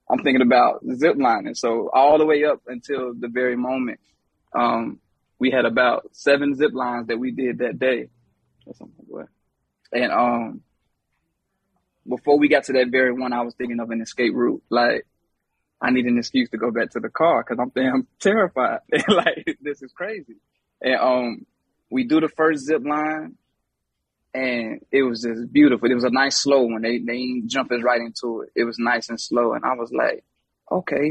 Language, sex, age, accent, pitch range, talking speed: English, male, 20-39, American, 115-140 Hz, 190 wpm